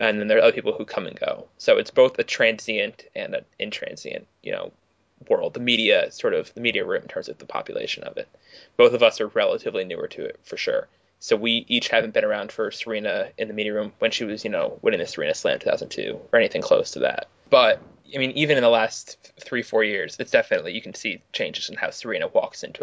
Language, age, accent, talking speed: English, 20-39, American, 245 wpm